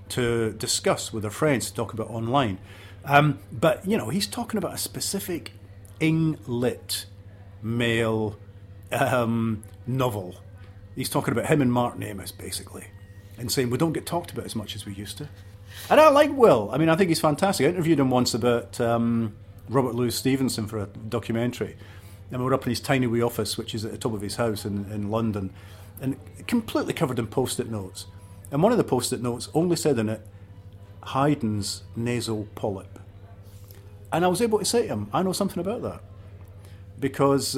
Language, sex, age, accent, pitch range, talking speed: English, male, 40-59, British, 100-130 Hz, 190 wpm